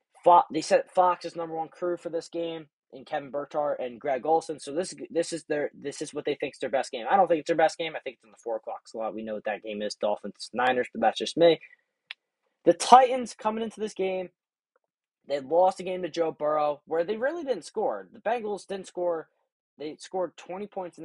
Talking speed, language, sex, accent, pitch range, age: 240 wpm, English, male, American, 145-195 Hz, 20-39